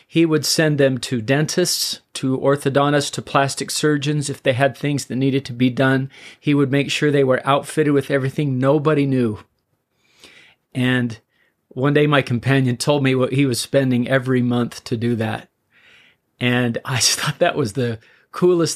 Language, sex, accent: English, male, American